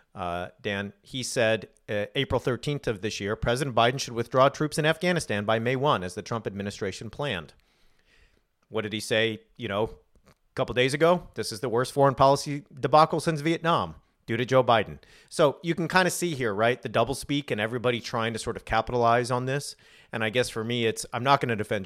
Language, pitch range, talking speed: English, 105-130 Hz, 215 wpm